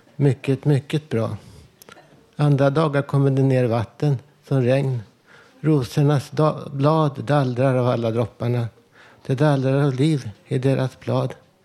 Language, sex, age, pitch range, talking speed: Swedish, male, 60-79, 120-145 Hz, 130 wpm